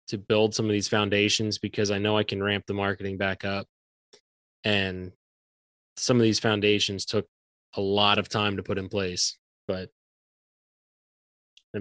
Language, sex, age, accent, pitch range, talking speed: English, male, 20-39, American, 100-110 Hz, 165 wpm